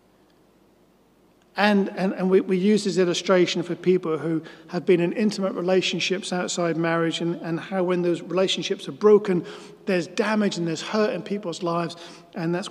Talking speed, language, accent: 170 wpm, English, British